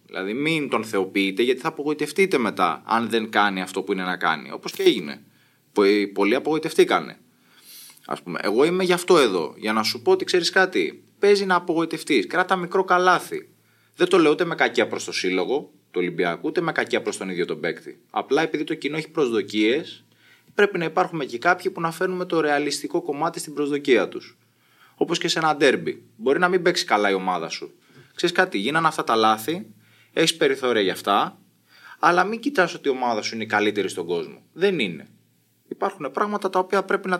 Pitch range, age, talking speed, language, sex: 150-205 Hz, 20-39, 200 wpm, Greek, male